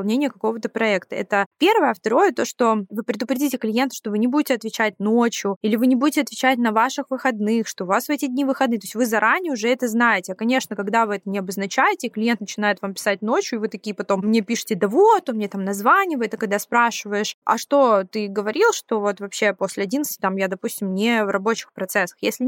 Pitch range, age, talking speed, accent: 205-255 Hz, 20-39, 225 wpm, native